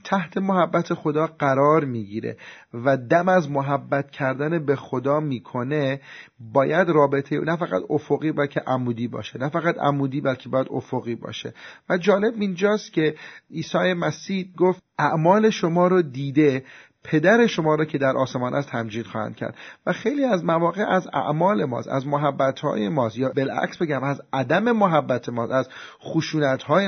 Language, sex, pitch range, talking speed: Persian, male, 130-170 Hz, 150 wpm